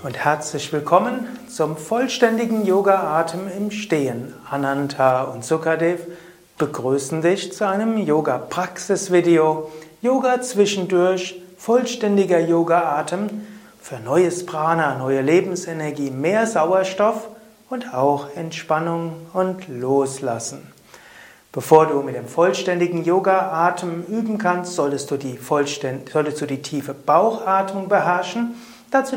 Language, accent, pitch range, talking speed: German, German, 150-200 Hz, 100 wpm